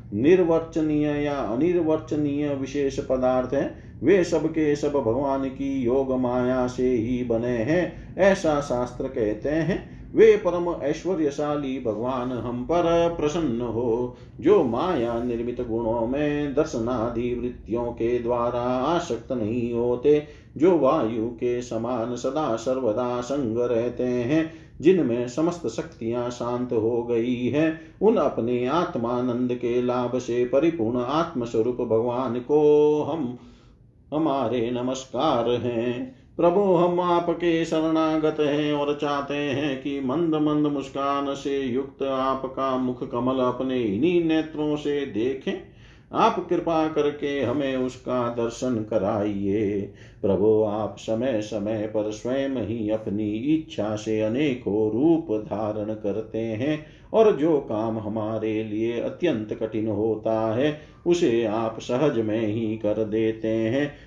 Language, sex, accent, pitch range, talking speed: Hindi, male, native, 115-145 Hz, 125 wpm